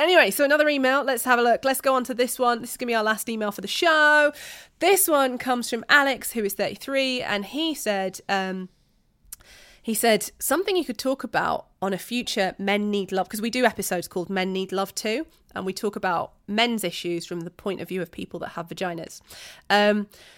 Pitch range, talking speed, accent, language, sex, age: 185-255 Hz, 220 wpm, British, English, female, 30-49